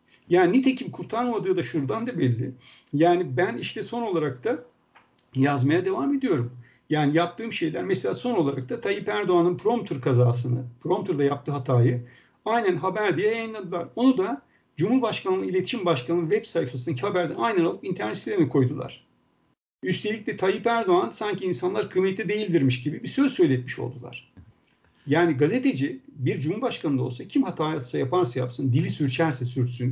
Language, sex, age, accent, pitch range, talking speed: Turkish, male, 60-79, native, 130-215 Hz, 145 wpm